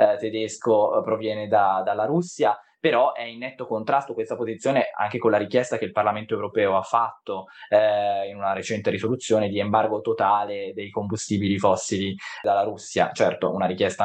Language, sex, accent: Italian, male, native